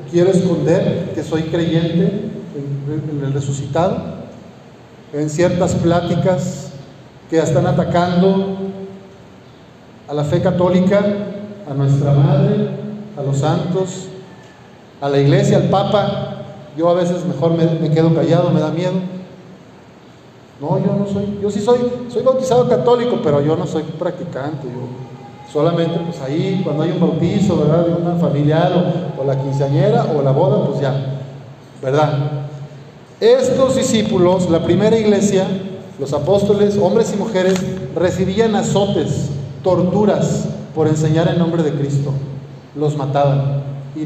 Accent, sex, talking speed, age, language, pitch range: Mexican, male, 140 wpm, 40-59, Spanish, 140-185 Hz